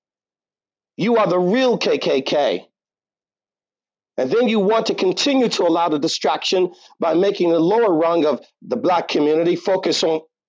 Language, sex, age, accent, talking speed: English, male, 50-69, American, 150 wpm